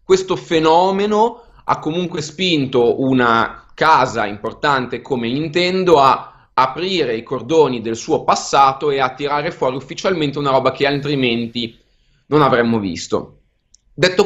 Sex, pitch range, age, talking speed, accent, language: male, 125-160 Hz, 20-39, 125 wpm, native, Italian